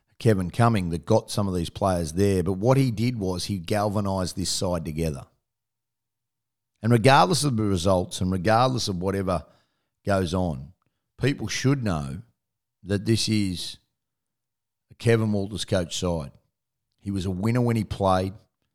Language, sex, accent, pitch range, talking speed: English, male, Australian, 95-115 Hz, 155 wpm